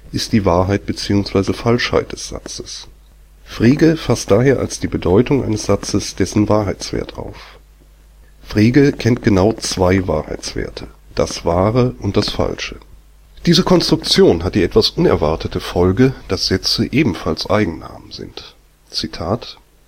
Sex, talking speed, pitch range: male, 125 wpm, 90-115 Hz